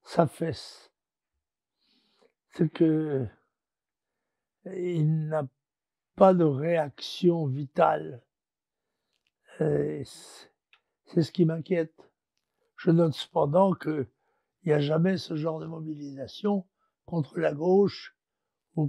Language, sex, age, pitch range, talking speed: French, male, 60-79, 150-180 Hz, 90 wpm